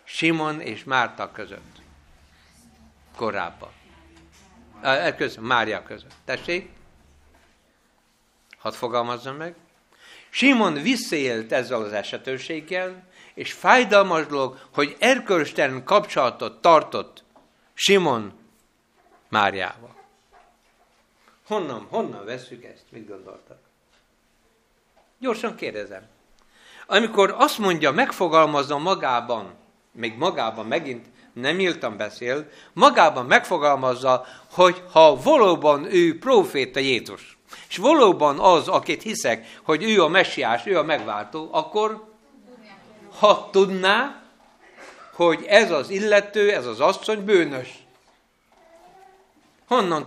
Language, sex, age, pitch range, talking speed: Hungarian, male, 60-79, 130-215 Hz, 90 wpm